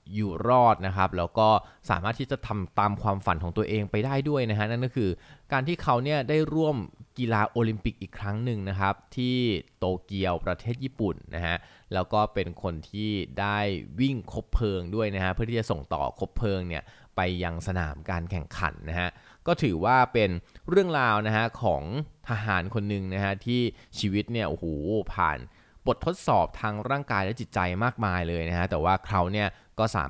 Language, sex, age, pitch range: Thai, male, 20-39, 95-115 Hz